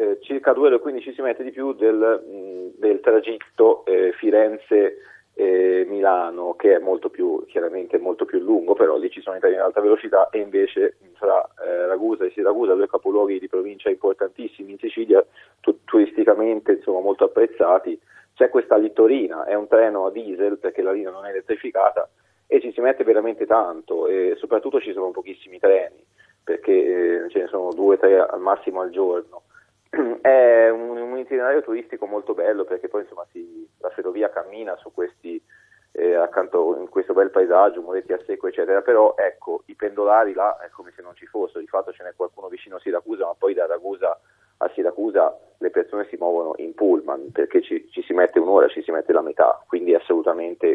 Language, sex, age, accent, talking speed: Italian, male, 30-49, native, 190 wpm